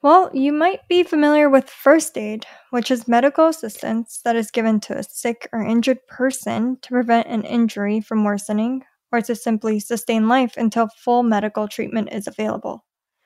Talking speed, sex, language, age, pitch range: 170 wpm, female, English, 10-29, 215-255 Hz